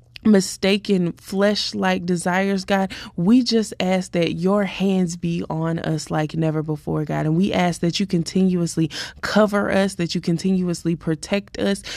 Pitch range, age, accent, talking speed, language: 170-200 Hz, 20-39, American, 150 wpm, English